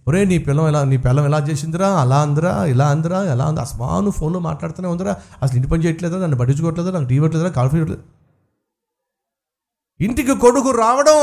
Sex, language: male, Telugu